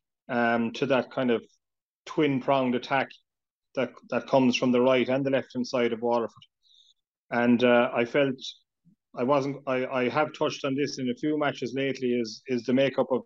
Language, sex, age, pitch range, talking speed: English, male, 30-49, 120-135 Hz, 195 wpm